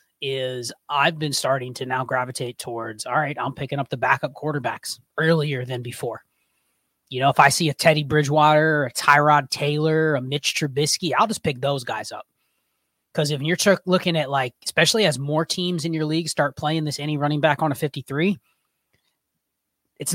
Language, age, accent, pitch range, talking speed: English, 20-39, American, 135-165 Hz, 185 wpm